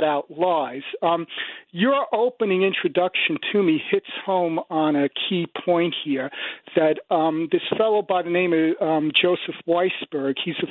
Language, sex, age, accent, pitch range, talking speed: English, male, 40-59, American, 170-225 Hz, 155 wpm